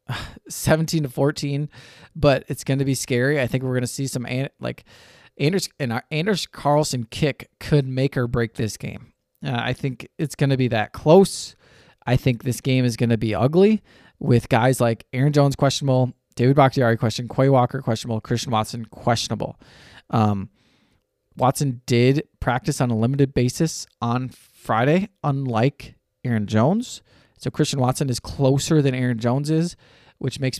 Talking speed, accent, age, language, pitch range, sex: 170 wpm, American, 20-39, English, 120-150 Hz, male